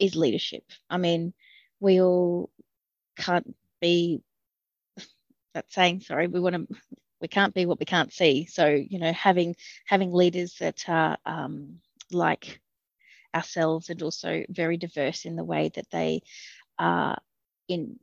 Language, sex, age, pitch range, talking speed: English, female, 30-49, 165-185 Hz, 145 wpm